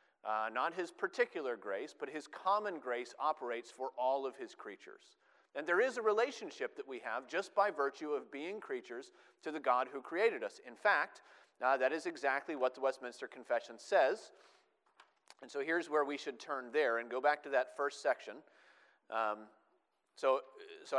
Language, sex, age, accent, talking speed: English, male, 40-59, American, 185 wpm